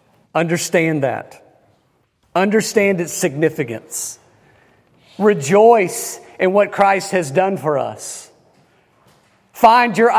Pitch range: 160-225 Hz